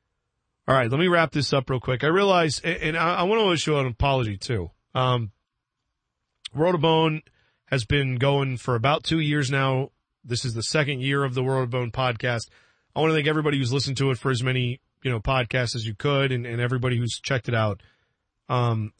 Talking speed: 210 wpm